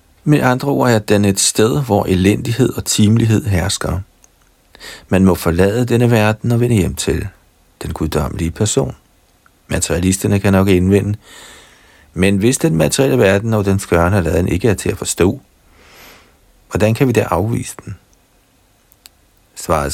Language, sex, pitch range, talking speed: Danish, male, 90-115 Hz, 145 wpm